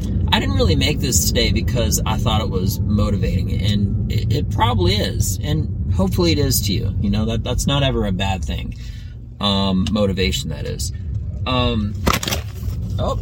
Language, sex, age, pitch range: English, male, 30-49, 95-105 Hz